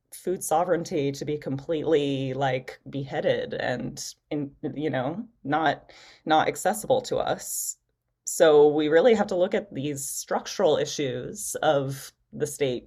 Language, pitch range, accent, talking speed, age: English, 140-180 Hz, American, 135 wpm, 20-39